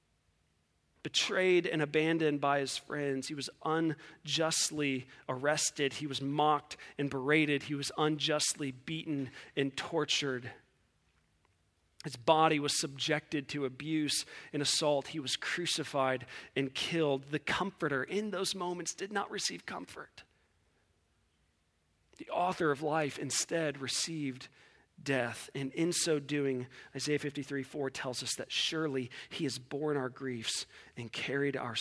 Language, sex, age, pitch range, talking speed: English, male, 40-59, 125-150 Hz, 130 wpm